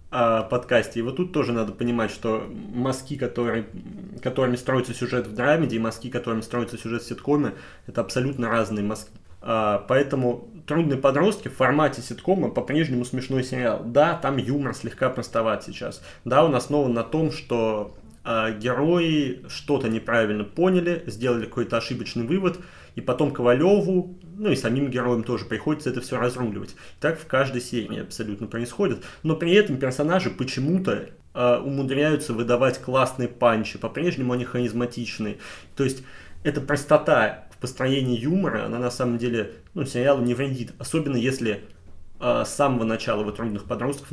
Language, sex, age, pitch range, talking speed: Russian, male, 20-39, 115-140 Hz, 150 wpm